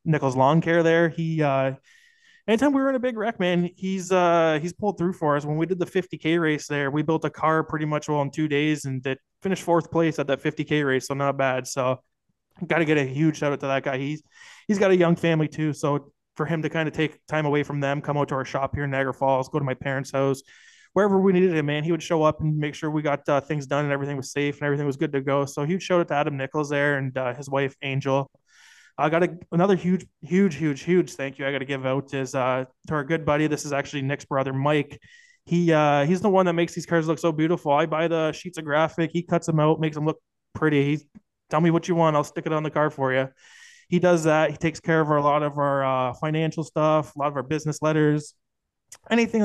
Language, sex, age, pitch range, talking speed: English, male, 20-39, 140-170 Hz, 275 wpm